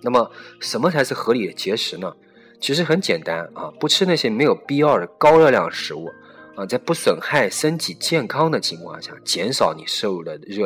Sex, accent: male, native